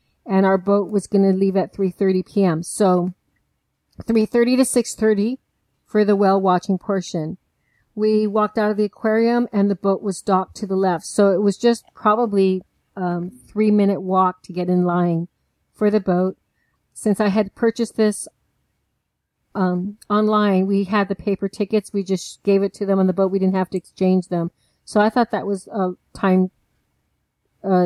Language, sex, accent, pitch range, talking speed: English, female, American, 185-210 Hz, 180 wpm